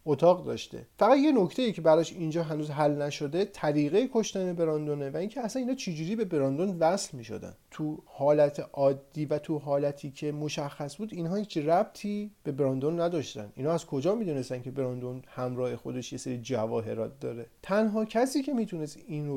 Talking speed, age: 185 wpm, 40-59